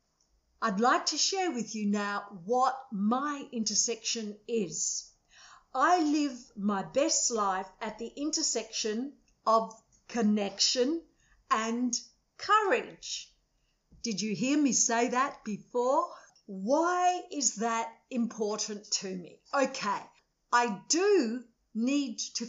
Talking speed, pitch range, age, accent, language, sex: 110 wpm, 220-285 Hz, 50-69, Australian, English, female